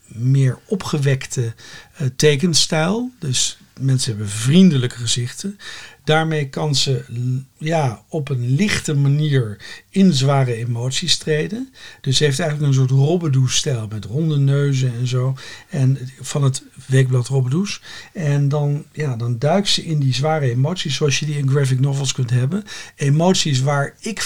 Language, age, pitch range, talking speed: Dutch, 60-79, 125-155 Hz, 150 wpm